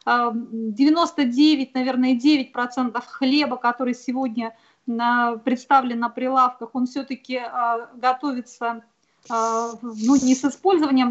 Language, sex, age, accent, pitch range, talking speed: Russian, female, 30-49, native, 245-275 Hz, 85 wpm